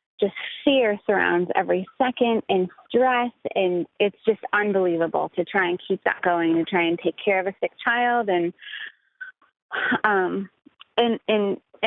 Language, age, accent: English, 30-49, American